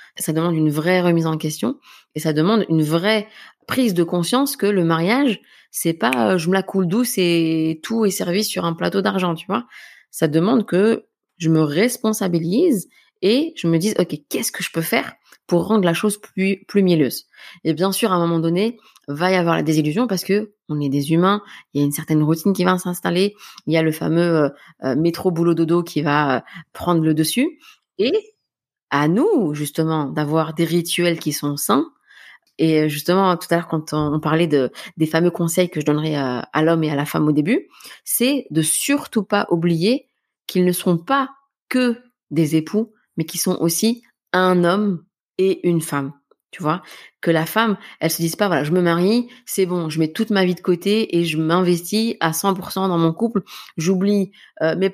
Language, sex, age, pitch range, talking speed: French, female, 20-39, 160-205 Hz, 205 wpm